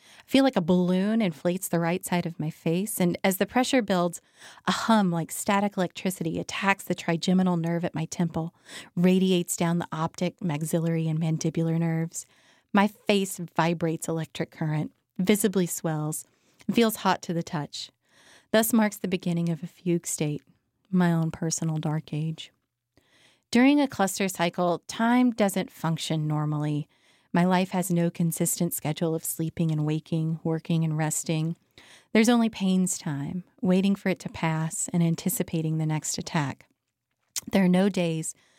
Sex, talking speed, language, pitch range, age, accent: female, 155 wpm, English, 160-195 Hz, 30-49, American